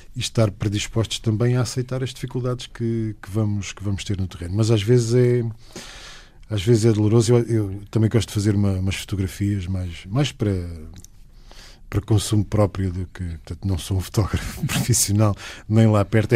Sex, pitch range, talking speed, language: male, 100-115 Hz, 185 wpm, Portuguese